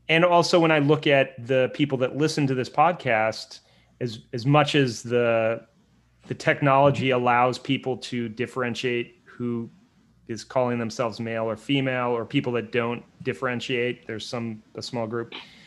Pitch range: 115-140 Hz